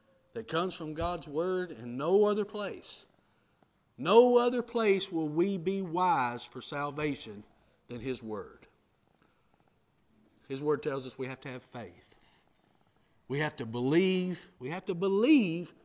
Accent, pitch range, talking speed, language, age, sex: American, 150-205 Hz, 145 wpm, English, 50-69, male